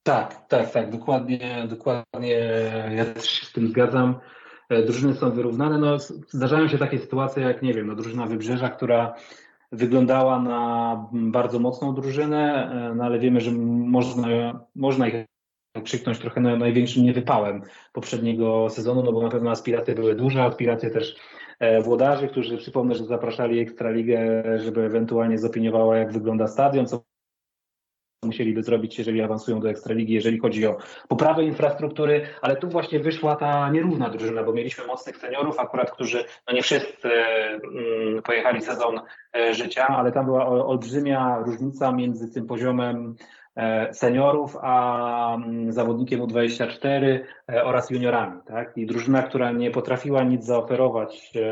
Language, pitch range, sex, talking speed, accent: Polish, 115-130 Hz, male, 140 wpm, native